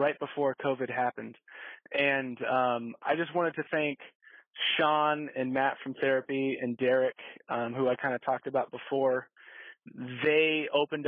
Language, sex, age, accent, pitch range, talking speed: English, male, 20-39, American, 125-145 Hz, 145 wpm